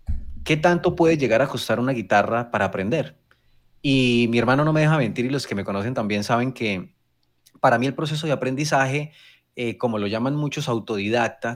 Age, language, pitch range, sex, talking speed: 30-49, Spanish, 105-140 Hz, male, 190 wpm